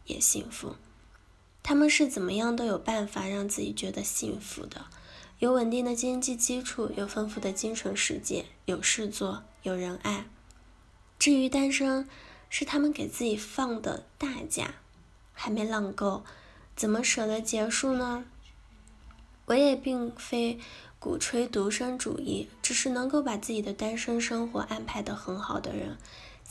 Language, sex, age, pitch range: Chinese, female, 10-29, 205-245 Hz